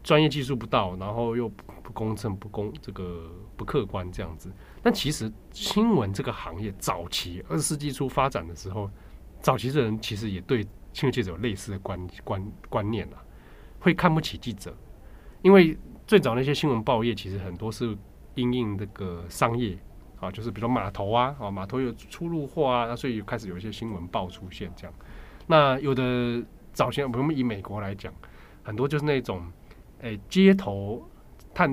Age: 20-39